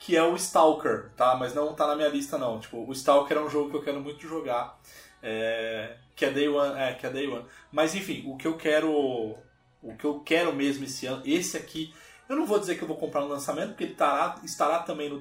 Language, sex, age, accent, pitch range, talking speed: Portuguese, male, 20-39, Brazilian, 125-155 Hz, 255 wpm